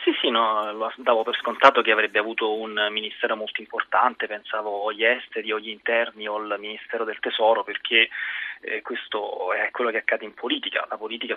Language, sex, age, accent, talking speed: Italian, male, 20-39, native, 190 wpm